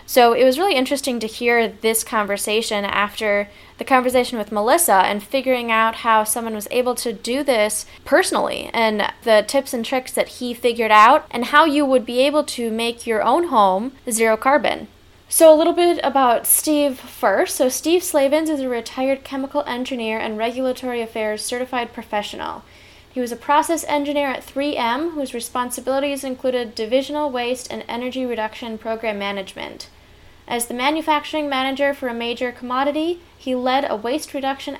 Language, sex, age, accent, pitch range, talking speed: English, female, 10-29, American, 235-285 Hz, 165 wpm